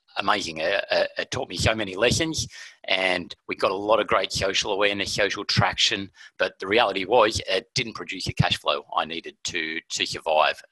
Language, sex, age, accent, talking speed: English, male, 40-59, Australian, 185 wpm